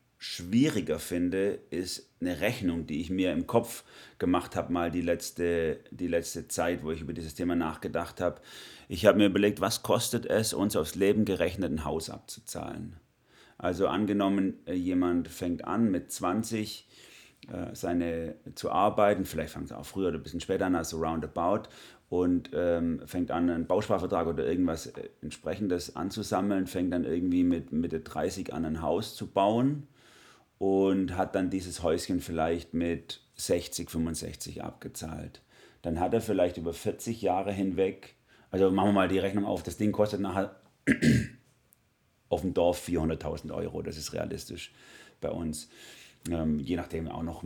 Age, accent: 30-49, German